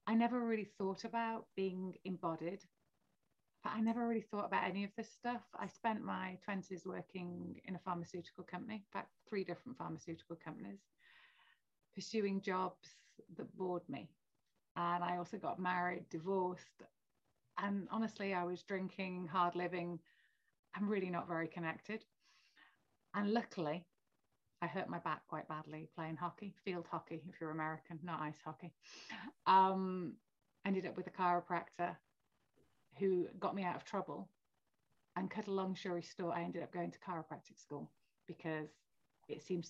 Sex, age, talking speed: female, 30-49, 150 wpm